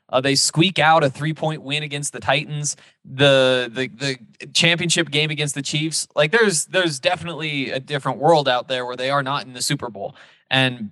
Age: 20-39